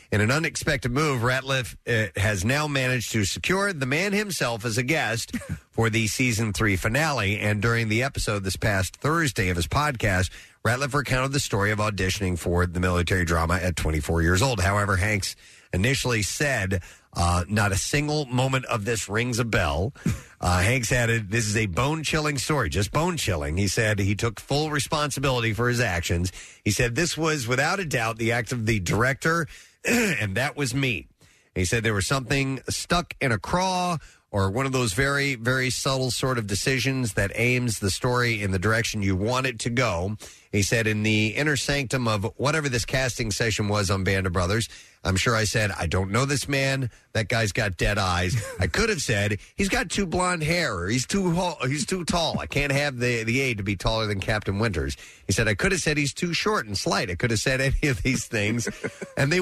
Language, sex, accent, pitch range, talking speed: English, male, American, 105-140 Hz, 205 wpm